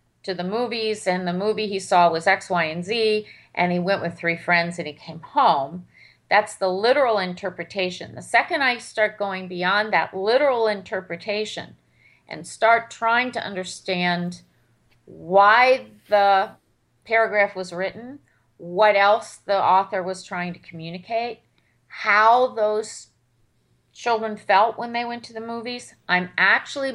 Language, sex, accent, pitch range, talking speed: English, female, American, 180-215 Hz, 145 wpm